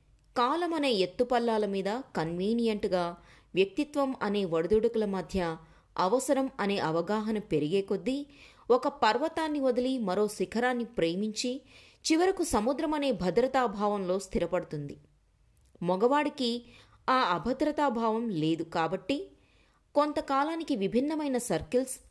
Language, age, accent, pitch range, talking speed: Telugu, 20-39, native, 180-260 Hz, 90 wpm